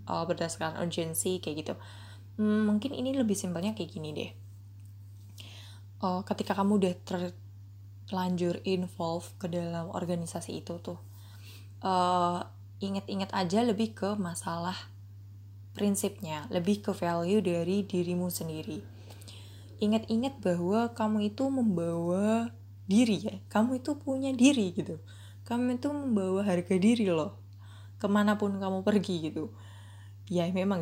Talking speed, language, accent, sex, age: 120 wpm, Indonesian, native, female, 20-39